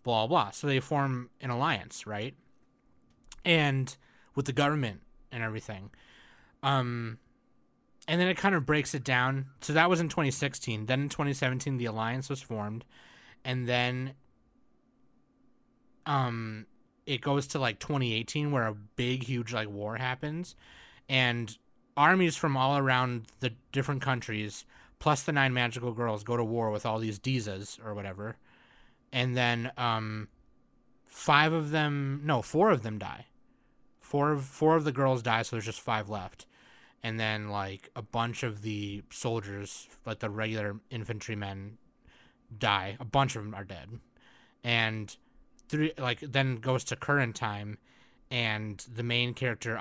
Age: 30-49